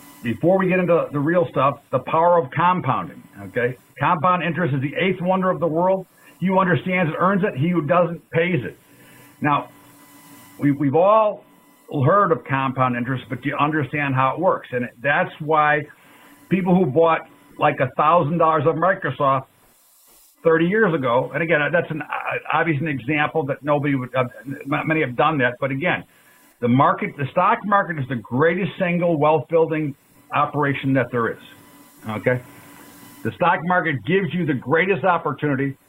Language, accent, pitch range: English, American, 135-170 Hz